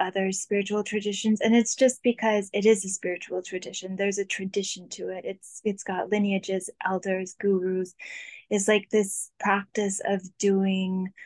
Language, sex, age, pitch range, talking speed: English, female, 10-29, 185-210 Hz, 155 wpm